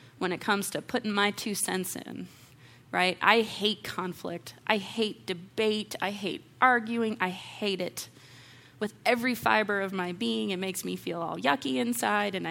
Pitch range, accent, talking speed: 130-215 Hz, American, 175 wpm